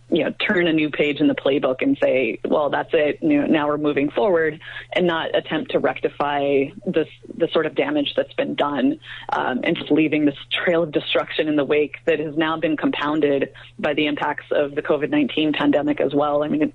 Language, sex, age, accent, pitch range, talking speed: English, female, 30-49, American, 140-175 Hz, 215 wpm